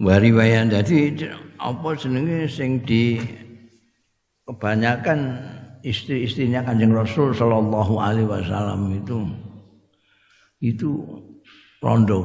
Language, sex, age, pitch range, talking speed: Indonesian, male, 60-79, 100-115 Hz, 80 wpm